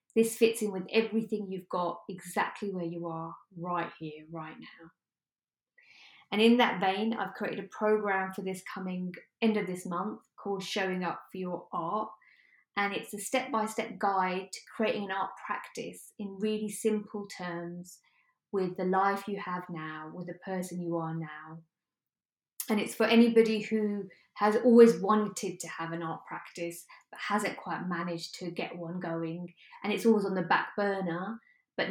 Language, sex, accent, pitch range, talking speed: English, female, British, 175-215 Hz, 175 wpm